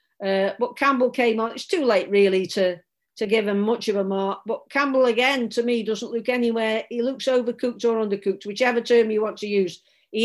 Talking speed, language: 215 wpm, English